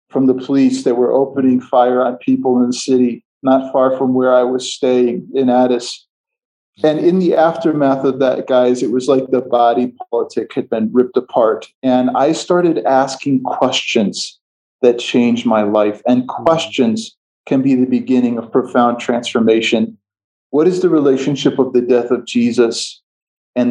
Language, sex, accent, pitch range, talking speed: English, male, American, 125-145 Hz, 165 wpm